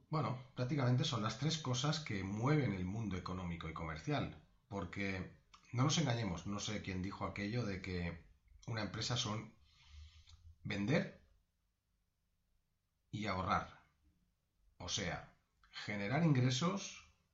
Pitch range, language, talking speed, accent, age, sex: 90-120 Hz, Spanish, 120 wpm, Spanish, 40-59, male